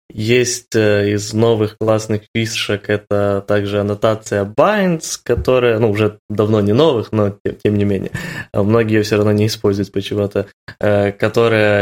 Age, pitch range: 20-39, 105-120 Hz